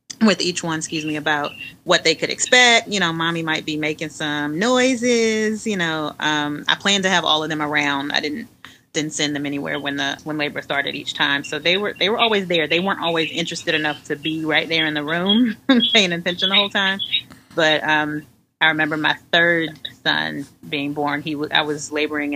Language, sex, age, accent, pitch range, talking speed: English, female, 30-49, American, 150-180 Hz, 215 wpm